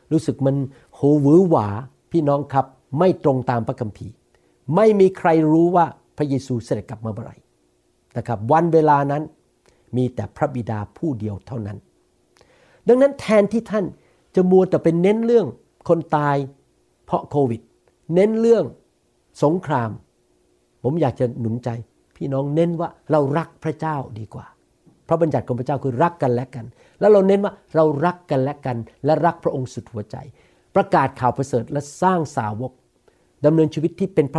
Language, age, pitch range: Thai, 60-79, 125-170 Hz